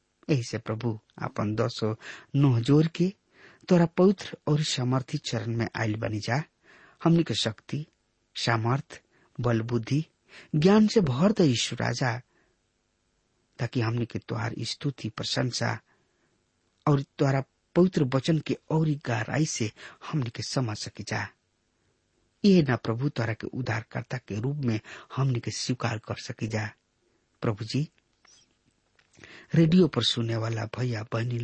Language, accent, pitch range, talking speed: English, Indian, 115-150 Hz, 120 wpm